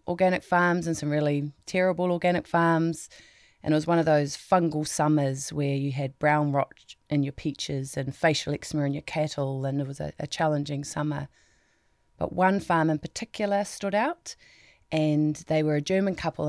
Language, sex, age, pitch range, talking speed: English, female, 30-49, 145-170 Hz, 180 wpm